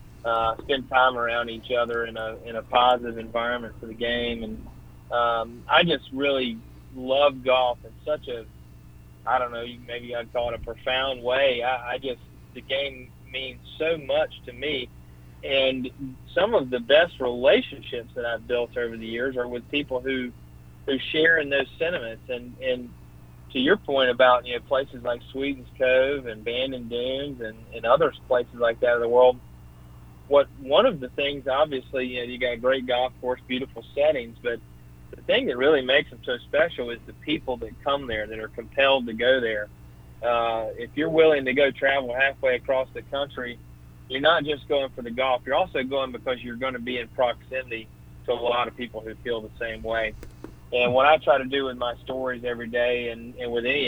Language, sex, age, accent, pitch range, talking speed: English, male, 30-49, American, 115-130 Hz, 200 wpm